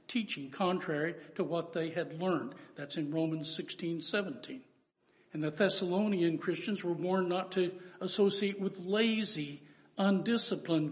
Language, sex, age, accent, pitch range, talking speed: English, male, 60-79, American, 165-210 Hz, 130 wpm